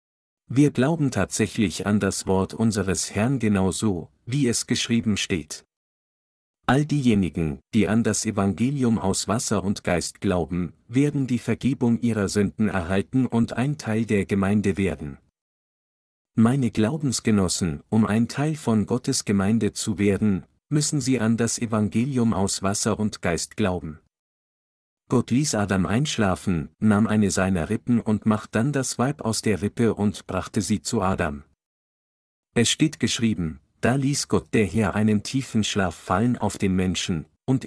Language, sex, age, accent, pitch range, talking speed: German, male, 50-69, German, 95-120 Hz, 150 wpm